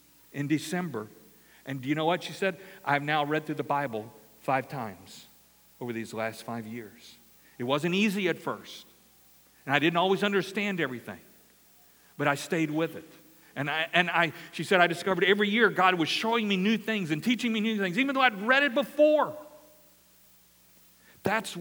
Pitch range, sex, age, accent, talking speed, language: 115-195 Hz, male, 50-69, American, 185 wpm, English